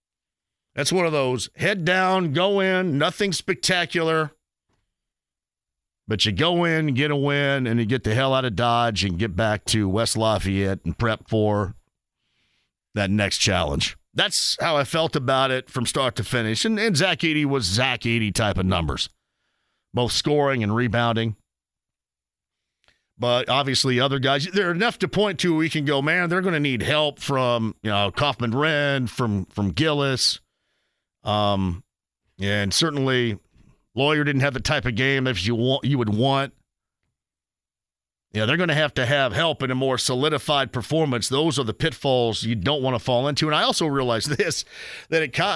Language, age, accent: English, 40-59, American